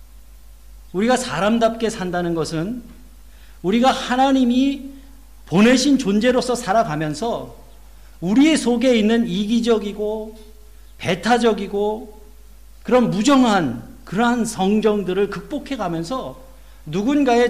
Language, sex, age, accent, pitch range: Korean, male, 50-69, native, 140-235 Hz